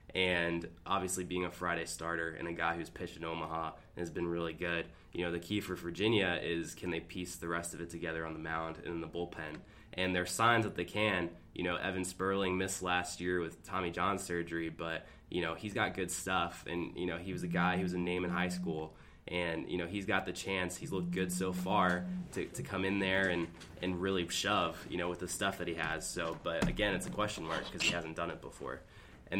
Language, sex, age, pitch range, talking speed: English, male, 20-39, 85-95 Hz, 250 wpm